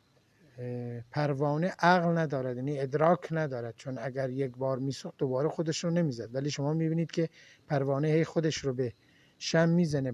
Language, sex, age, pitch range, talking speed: Persian, male, 50-69, 130-170 Hz, 140 wpm